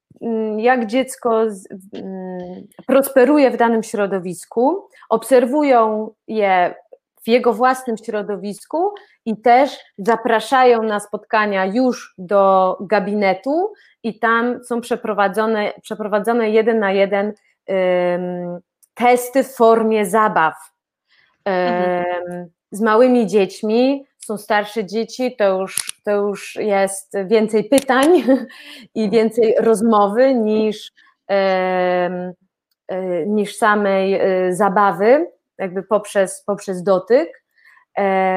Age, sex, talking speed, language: 20-39, female, 85 wpm, Polish